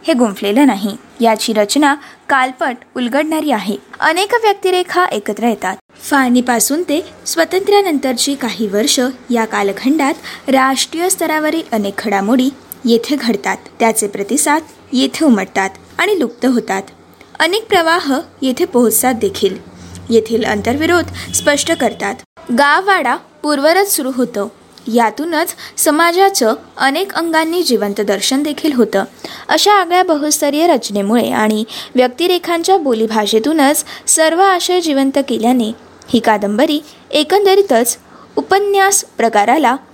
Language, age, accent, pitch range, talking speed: Marathi, 20-39, native, 230-325 Hz, 95 wpm